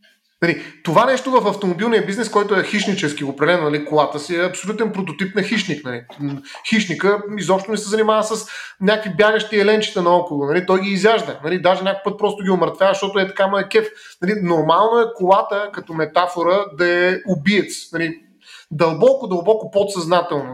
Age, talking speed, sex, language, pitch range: 30-49, 170 wpm, male, Bulgarian, 165-210 Hz